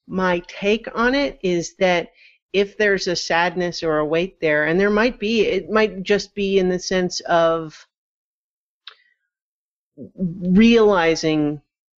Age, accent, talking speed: 40-59, American, 135 wpm